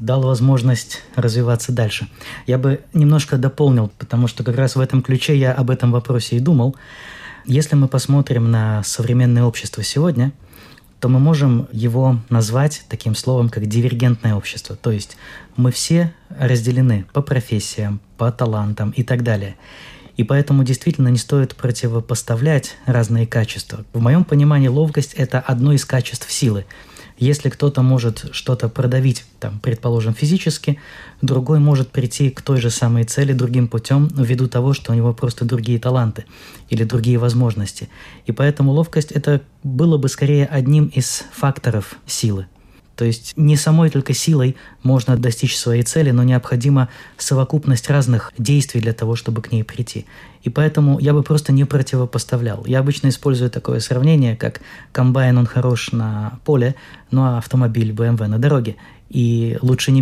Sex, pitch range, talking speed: male, 115-140 Hz, 155 wpm